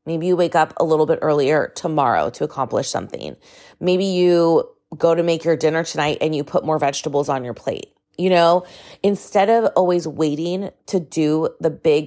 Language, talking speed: English, 190 wpm